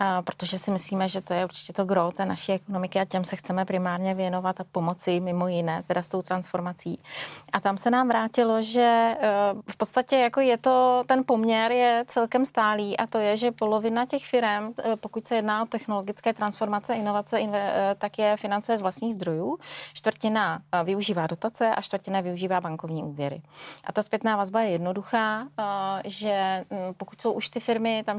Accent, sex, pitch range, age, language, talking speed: native, female, 190-220 Hz, 30-49, Czech, 180 wpm